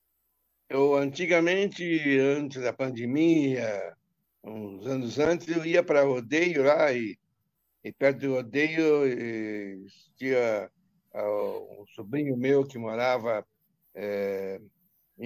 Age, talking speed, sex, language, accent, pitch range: 60-79, 105 wpm, male, Portuguese, Brazilian, 120-155 Hz